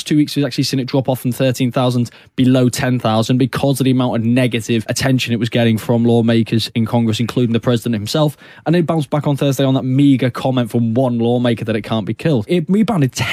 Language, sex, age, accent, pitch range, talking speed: English, male, 20-39, British, 125-150 Hz, 225 wpm